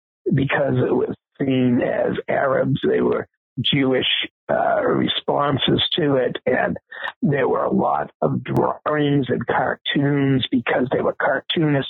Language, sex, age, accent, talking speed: English, male, 60-79, American, 130 wpm